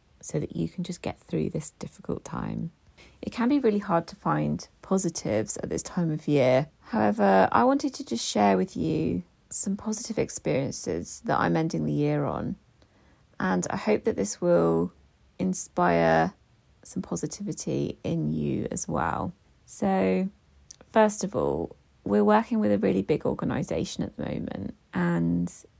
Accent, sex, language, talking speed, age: British, female, English, 160 wpm, 30-49